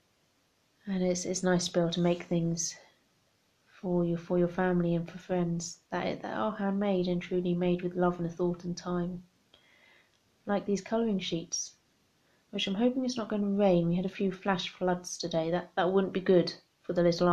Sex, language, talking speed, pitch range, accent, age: female, English, 205 wpm, 175-215 Hz, British, 30-49